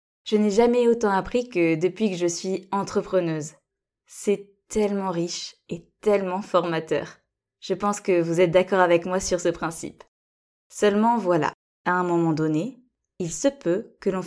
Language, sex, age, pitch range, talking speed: French, female, 20-39, 175-215 Hz, 165 wpm